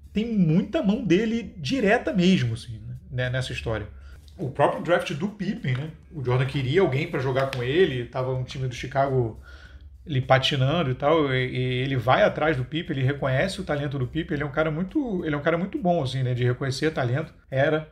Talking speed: 210 wpm